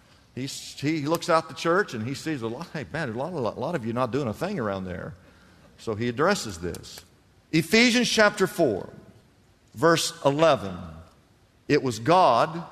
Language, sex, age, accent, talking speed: English, male, 50-69, American, 170 wpm